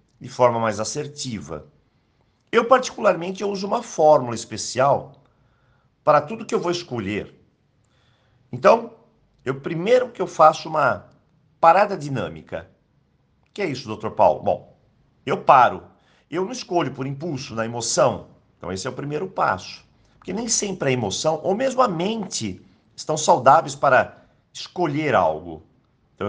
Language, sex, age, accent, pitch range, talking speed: Portuguese, male, 50-69, Brazilian, 110-170 Hz, 140 wpm